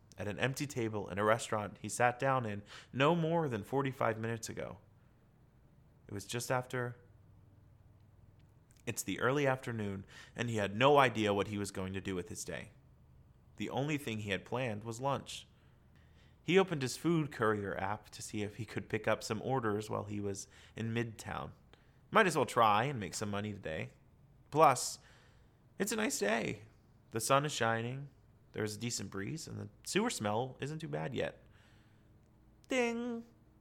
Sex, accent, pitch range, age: male, American, 105-130 Hz, 30-49